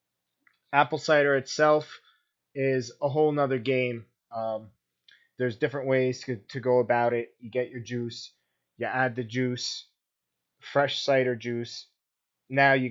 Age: 20-39